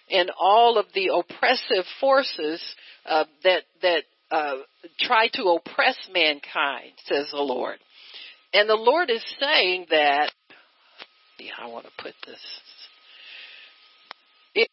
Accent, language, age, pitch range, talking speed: American, English, 60-79, 180-235 Hz, 120 wpm